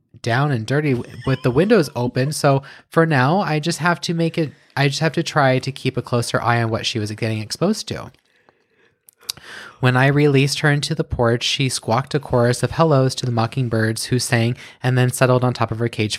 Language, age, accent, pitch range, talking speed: English, 20-39, American, 120-155 Hz, 220 wpm